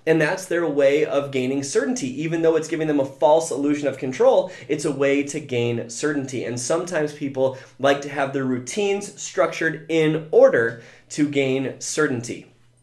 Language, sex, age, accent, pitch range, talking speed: English, male, 20-39, American, 135-170 Hz, 175 wpm